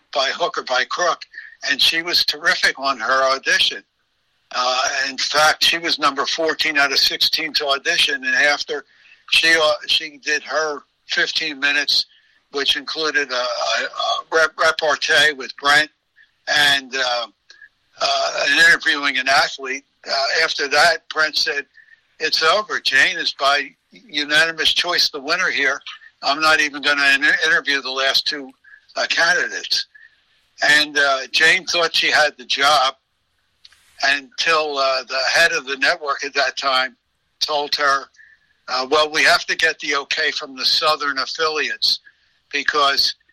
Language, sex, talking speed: English, male, 145 wpm